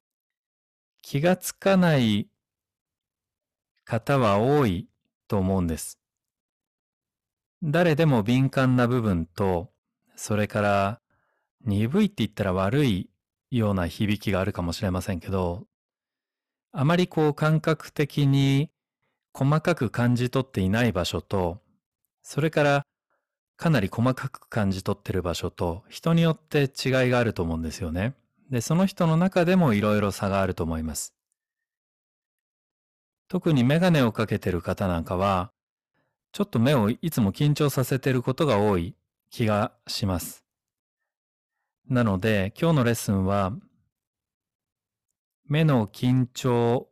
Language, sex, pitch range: Japanese, male, 100-145 Hz